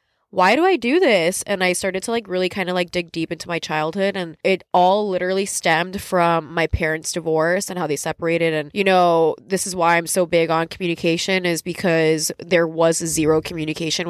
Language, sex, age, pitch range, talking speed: English, female, 20-39, 165-190 Hz, 210 wpm